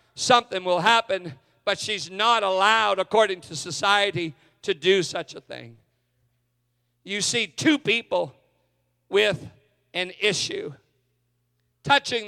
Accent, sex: American, male